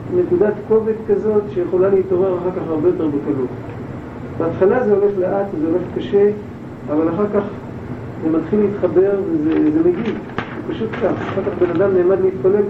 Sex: male